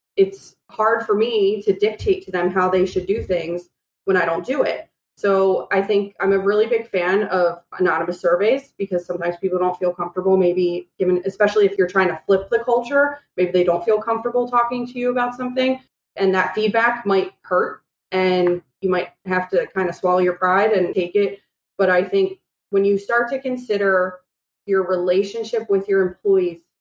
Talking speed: 190 wpm